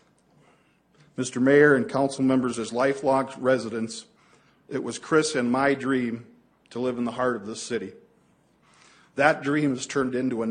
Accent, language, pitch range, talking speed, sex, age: American, English, 125-145 Hz, 160 wpm, male, 50-69